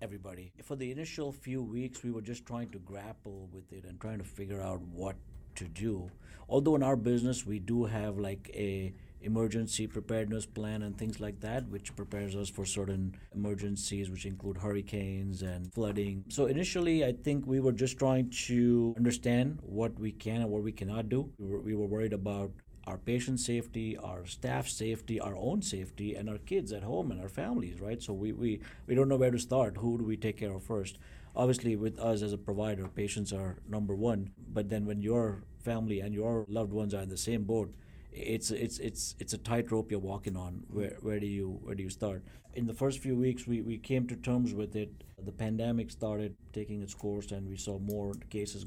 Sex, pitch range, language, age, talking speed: male, 100-115 Hz, English, 50-69, 210 wpm